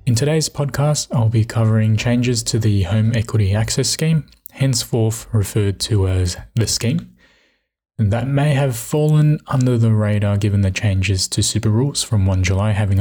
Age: 20-39